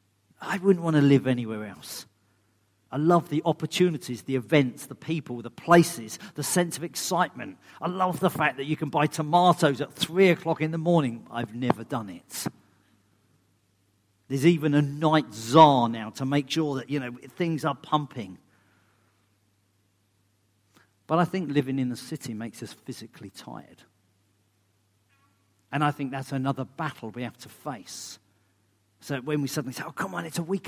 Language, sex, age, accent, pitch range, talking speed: English, male, 50-69, British, 105-160 Hz, 170 wpm